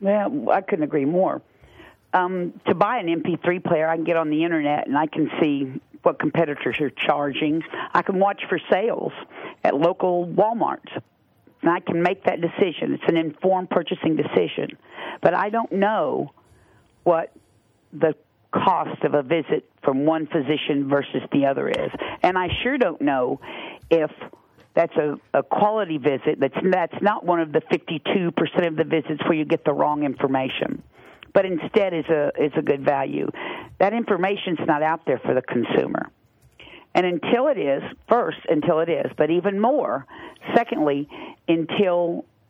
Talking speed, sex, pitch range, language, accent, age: 170 wpm, female, 155-195 Hz, English, American, 50-69